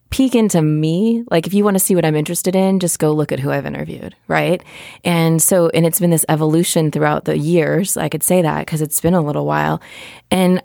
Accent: American